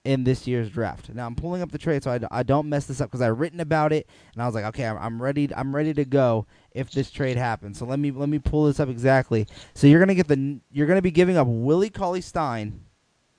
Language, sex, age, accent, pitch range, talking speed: English, male, 20-39, American, 130-185 Hz, 270 wpm